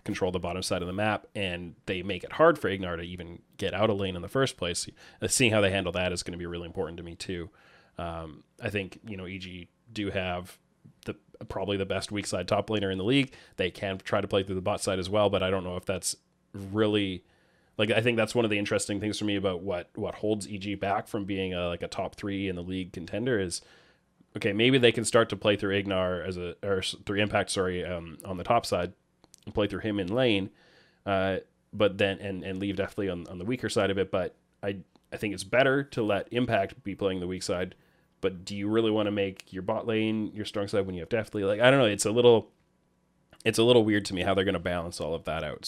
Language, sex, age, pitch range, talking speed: English, male, 20-39, 90-105 Hz, 260 wpm